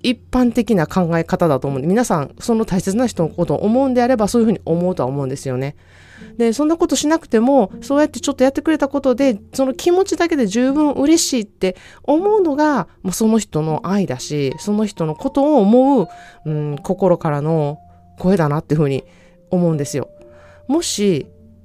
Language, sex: Japanese, female